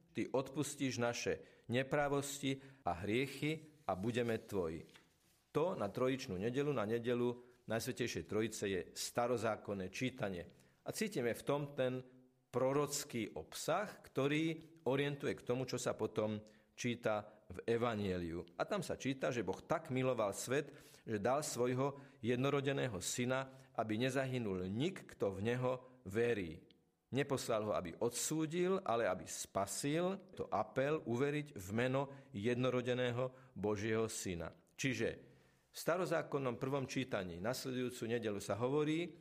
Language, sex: Slovak, male